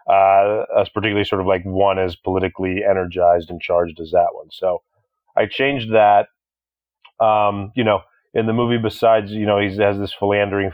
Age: 30-49